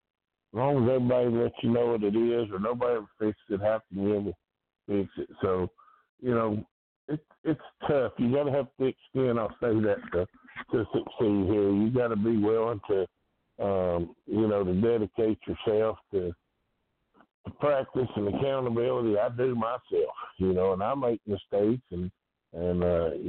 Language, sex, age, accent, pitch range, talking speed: English, male, 60-79, American, 95-125 Hz, 185 wpm